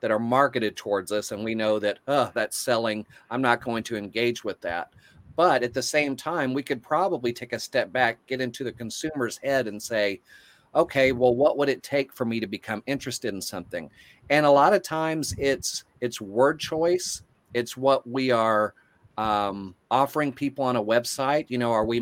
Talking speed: 200 wpm